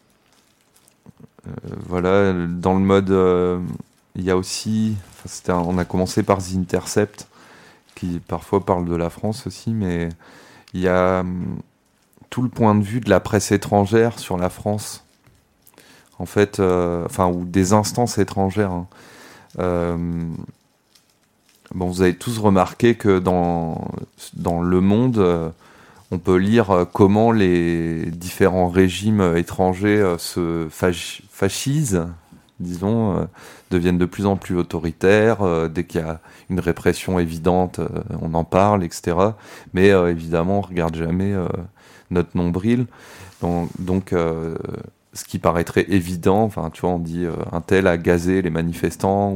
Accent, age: French, 30-49